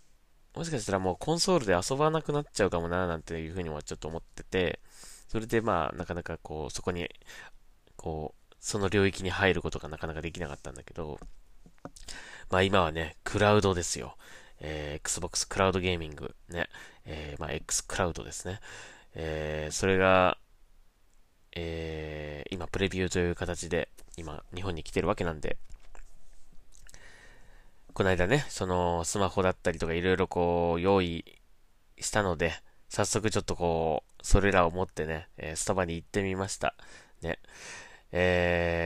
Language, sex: Japanese, male